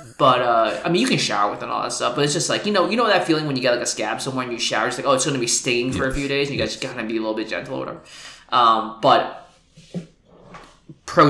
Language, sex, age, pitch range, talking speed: English, male, 20-39, 115-155 Hz, 325 wpm